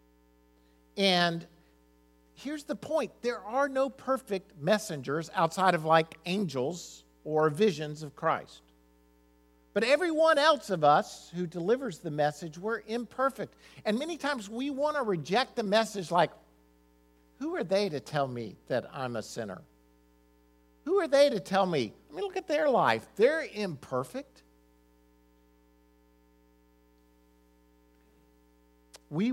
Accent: American